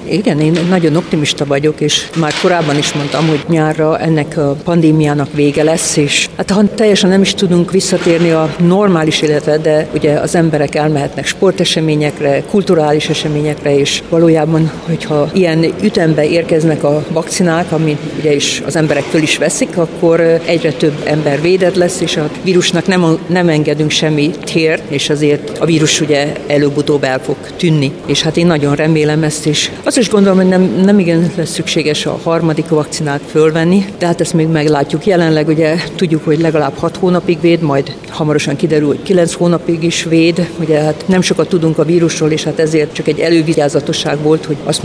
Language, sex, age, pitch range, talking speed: Hungarian, female, 50-69, 150-170 Hz, 175 wpm